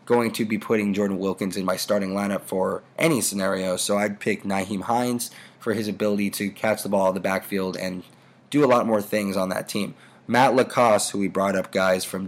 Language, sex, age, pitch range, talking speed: English, male, 20-39, 100-115 Hz, 220 wpm